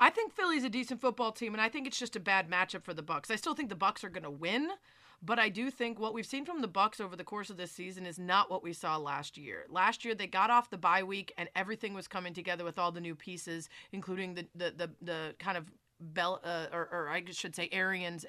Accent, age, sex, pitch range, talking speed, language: American, 30-49, female, 175-220 Hz, 270 wpm, English